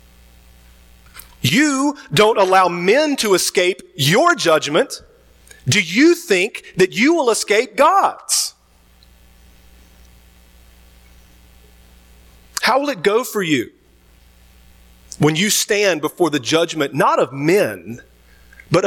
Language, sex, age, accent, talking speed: English, male, 40-59, American, 100 wpm